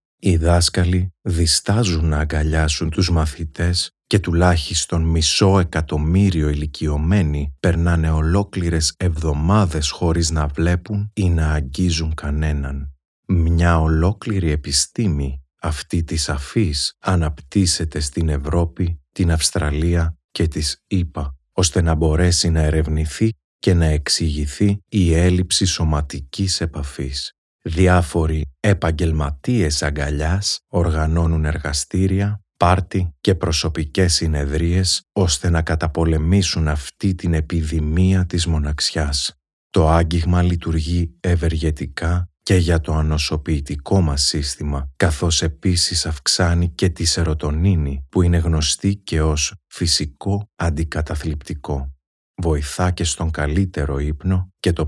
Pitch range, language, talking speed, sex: 75-90 Hz, Greek, 105 wpm, male